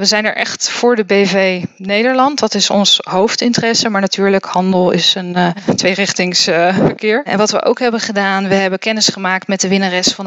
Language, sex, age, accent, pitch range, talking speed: Dutch, female, 20-39, Dutch, 185-210 Hz, 200 wpm